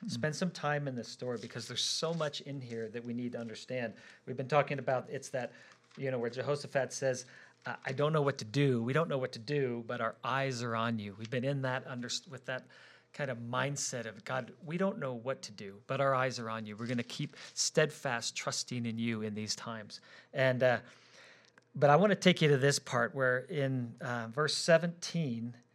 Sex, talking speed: male, 225 wpm